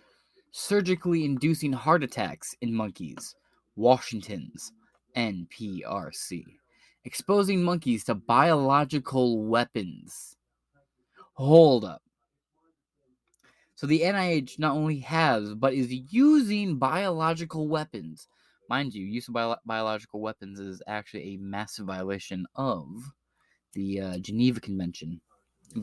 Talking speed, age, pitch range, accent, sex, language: 100 wpm, 20-39, 105-150 Hz, American, male, English